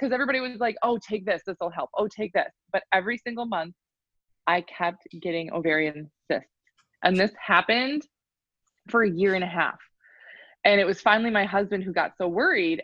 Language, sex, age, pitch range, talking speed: English, female, 20-39, 160-215 Hz, 185 wpm